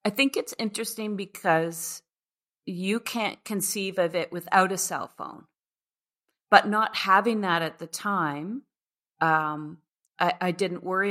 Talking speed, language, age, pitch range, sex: 140 wpm, English, 40-59, 155-185 Hz, female